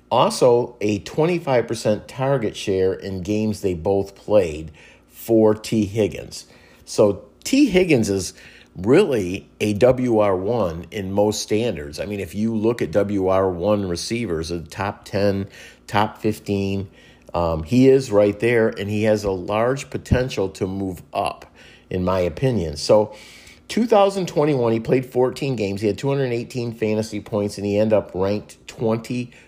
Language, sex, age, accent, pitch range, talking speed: English, male, 50-69, American, 95-120 Hz, 145 wpm